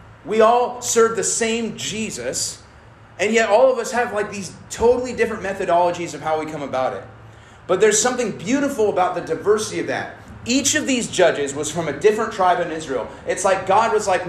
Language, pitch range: English, 160-230 Hz